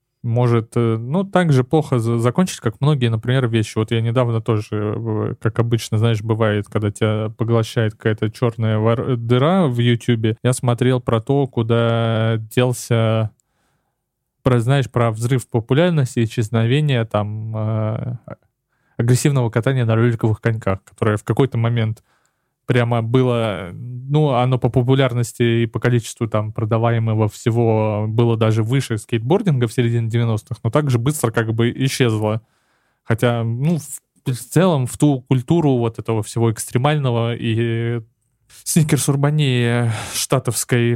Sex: male